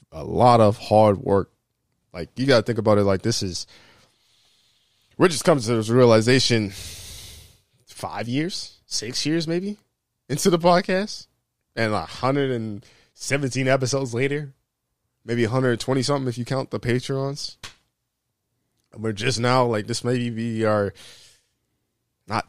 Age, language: 20-39, English